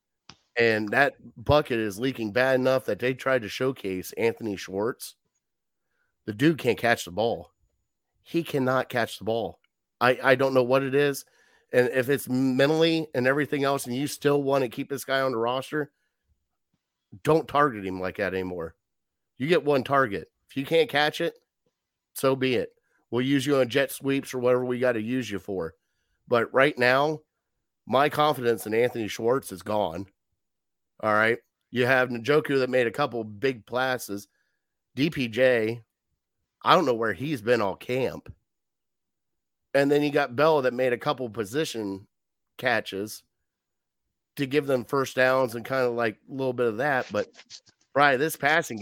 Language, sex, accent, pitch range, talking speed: English, male, American, 115-140 Hz, 175 wpm